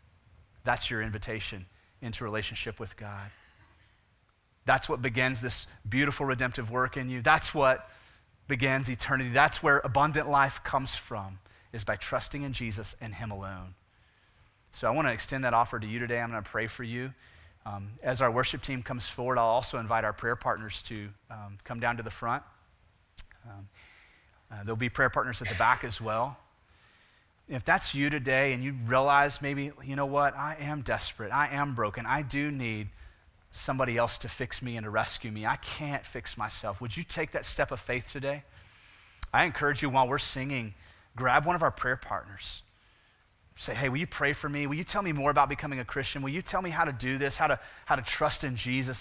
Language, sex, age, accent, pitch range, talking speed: English, male, 30-49, American, 105-135 Hz, 200 wpm